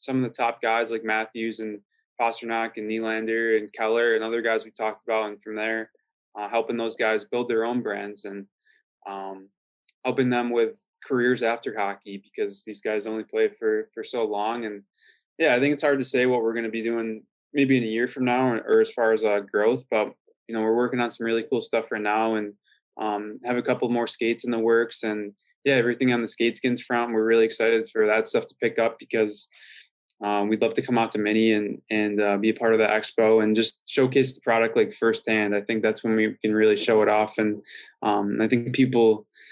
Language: English